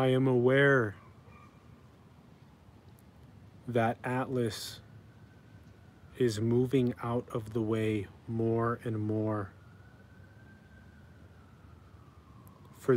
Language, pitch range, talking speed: English, 105-130 Hz, 70 wpm